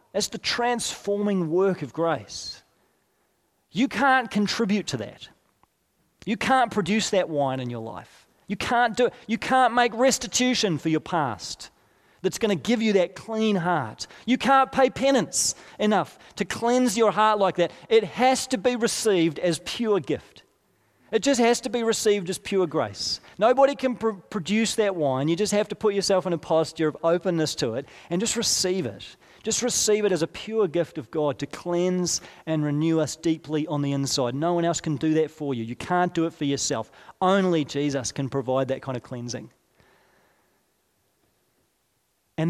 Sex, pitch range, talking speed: male, 145-215 Hz, 185 wpm